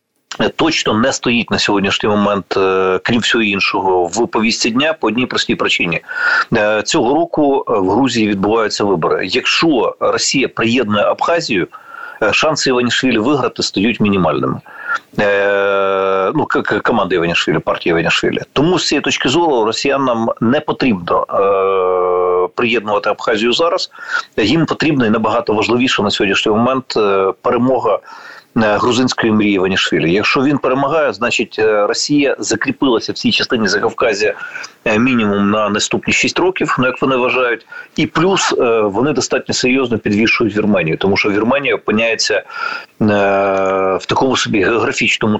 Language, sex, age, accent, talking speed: Ukrainian, male, 40-59, native, 125 wpm